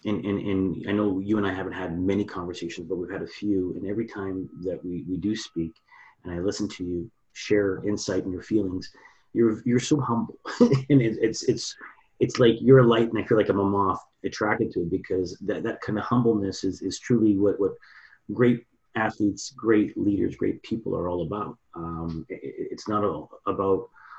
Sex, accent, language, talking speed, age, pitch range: male, American, English, 205 wpm, 30-49, 95-110 Hz